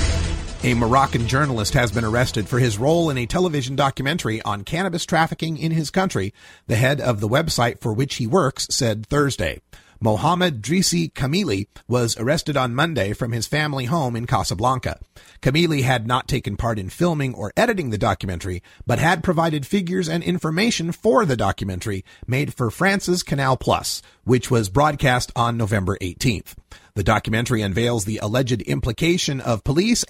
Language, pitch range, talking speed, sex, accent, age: English, 110-160 Hz, 165 wpm, male, American, 40-59